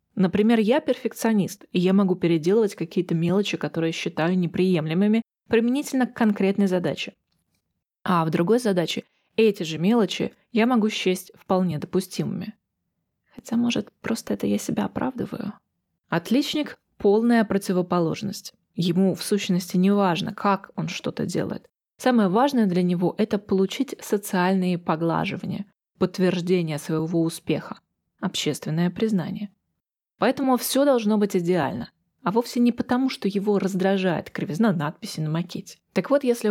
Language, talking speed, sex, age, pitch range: Russian, 130 wpm, female, 20-39, 170-215 Hz